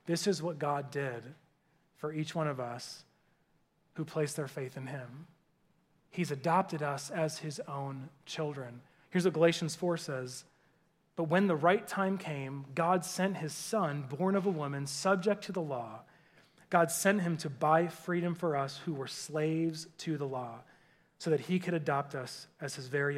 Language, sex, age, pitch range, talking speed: English, male, 30-49, 140-175 Hz, 180 wpm